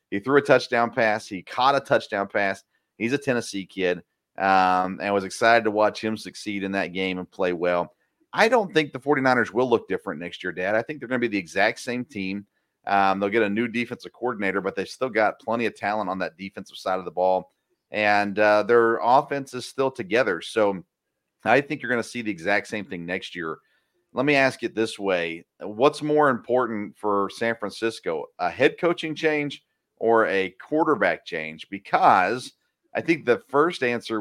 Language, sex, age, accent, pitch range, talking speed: English, male, 40-59, American, 95-125 Hz, 205 wpm